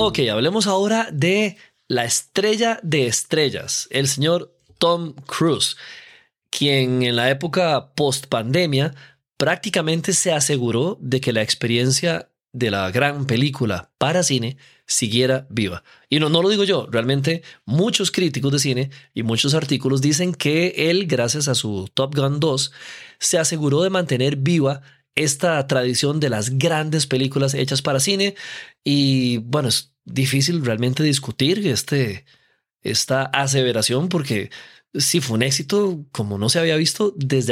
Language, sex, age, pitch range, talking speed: Spanish, male, 20-39, 130-165 Hz, 145 wpm